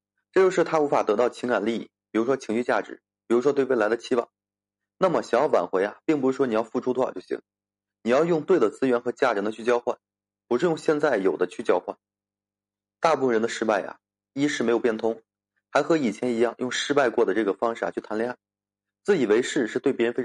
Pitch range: 100-135 Hz